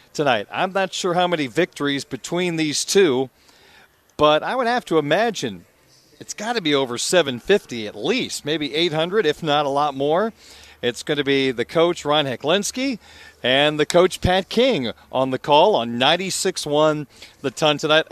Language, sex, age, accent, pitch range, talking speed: English, male, 40-59, American, 135-170 Hz, 170 wpm